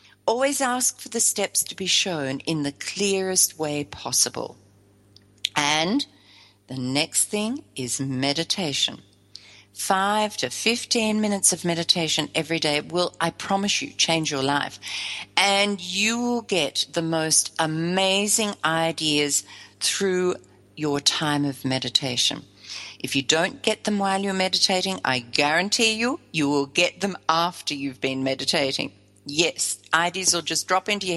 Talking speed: 140 wpm